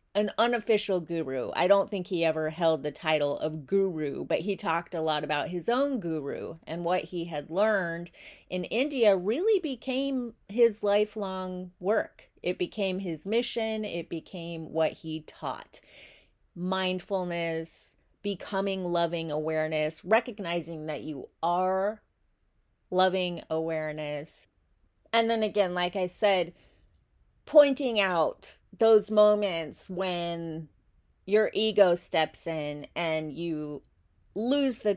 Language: English